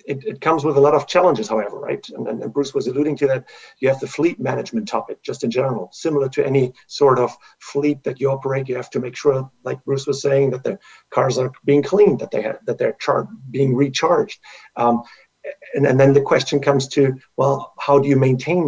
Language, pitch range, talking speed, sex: English, 130-150 Hz, 230 wpm, male